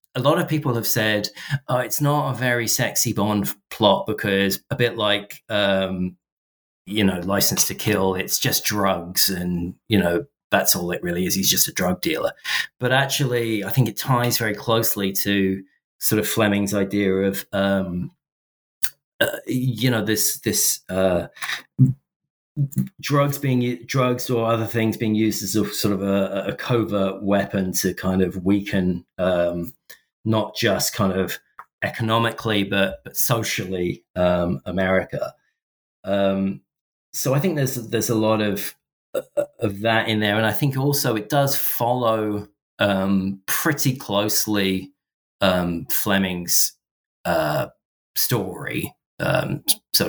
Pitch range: 95-125 Hz